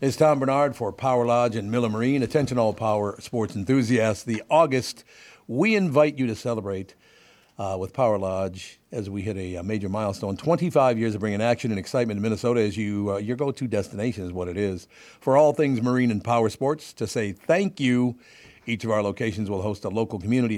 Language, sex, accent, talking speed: English, male, American, 205 wpm